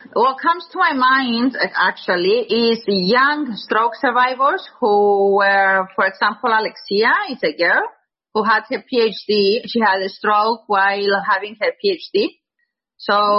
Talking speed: 145 wpm